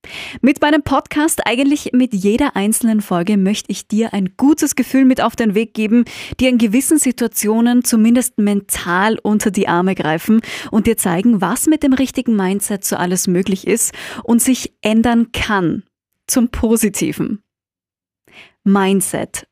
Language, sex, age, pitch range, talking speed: German, female, 20-39, 200-255 Hz, 150 wpm